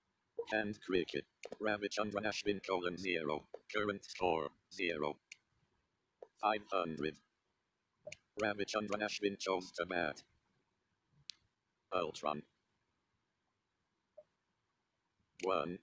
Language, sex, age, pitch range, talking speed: Tamil, male, 50-69, 95-105 Hz, 75 wpm